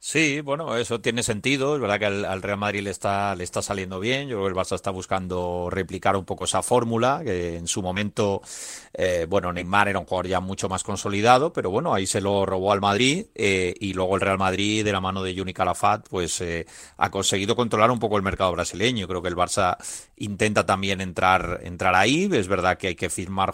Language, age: Spanish, 30-49